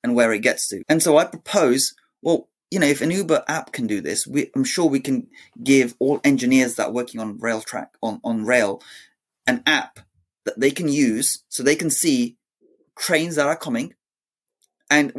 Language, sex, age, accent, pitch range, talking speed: English, male, 30-49, British, 125-180 Hz, 200 wpm